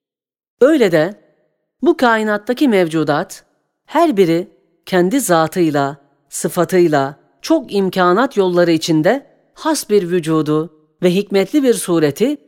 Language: Turkish